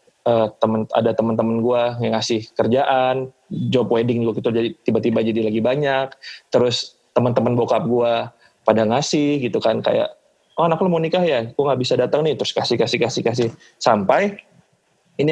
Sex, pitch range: male, 115-130 Hz